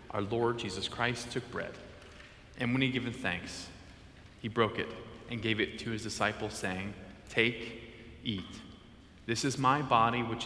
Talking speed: 160 wpm